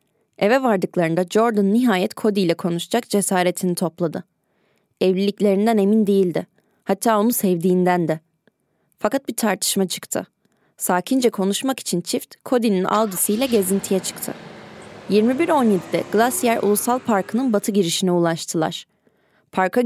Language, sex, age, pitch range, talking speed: Turkish, female, 20-39, 180-220 Hz, 110 wpm